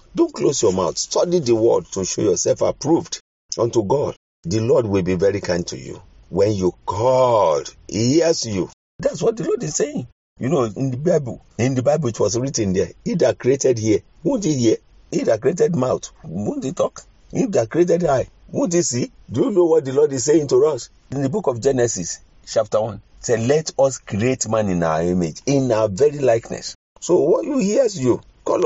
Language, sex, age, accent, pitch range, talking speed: English, male, 50-69, Nigerian, 100-155 Hz, 215 wpm